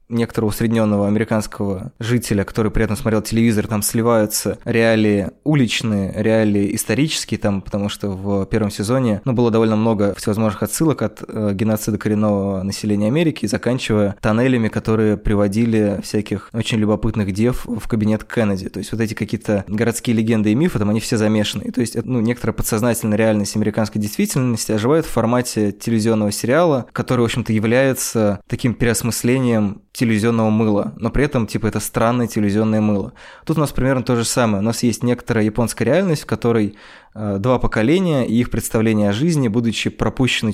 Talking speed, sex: 160 wpm, male